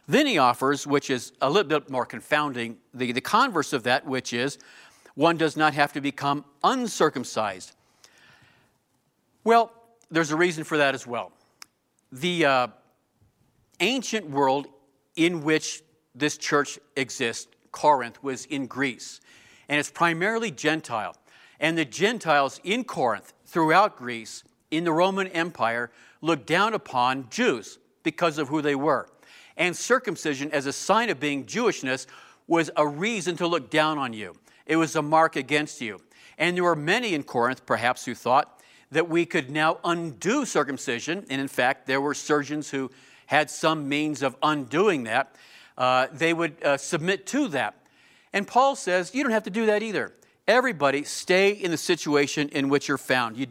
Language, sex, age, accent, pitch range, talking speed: English, male, 50-69, American, 135-170 Hz, 165 wpm